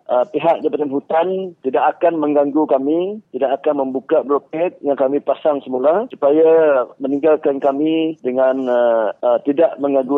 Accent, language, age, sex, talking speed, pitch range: Indonesian, English, 40-59, male, 140 wpm, 130-155 Hz